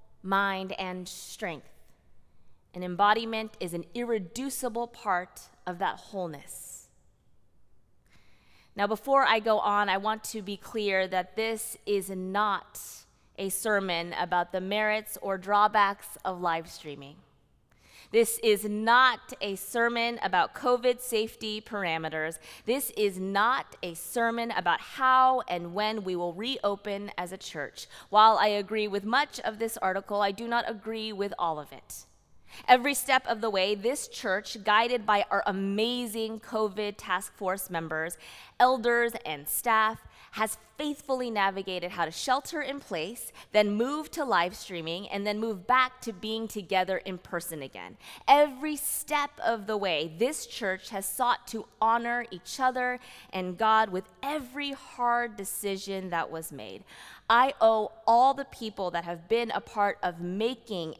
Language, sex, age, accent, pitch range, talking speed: English, female, 20-39, American, 180-235 Hz, 150 wpm